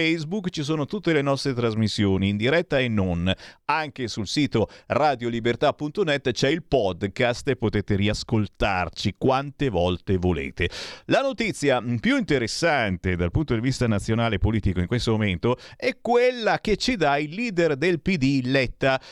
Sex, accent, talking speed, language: male, native, 145 wpm, Italian